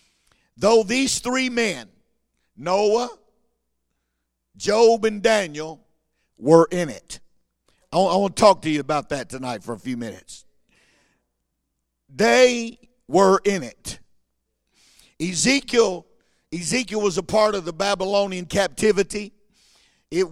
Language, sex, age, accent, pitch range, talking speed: English, male, 50-69, American, 165-210 Hz, 110 wpm